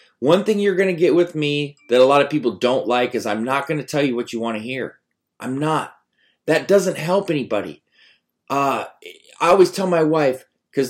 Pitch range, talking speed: 115-160 Hz, 220 wpm